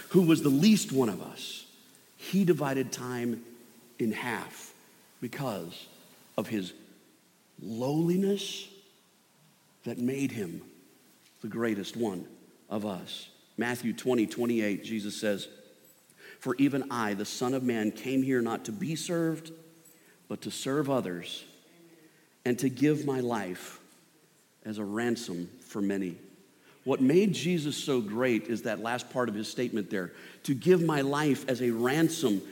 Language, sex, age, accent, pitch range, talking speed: English, male, 50-69, American, 120-180 Hz, 140 wpm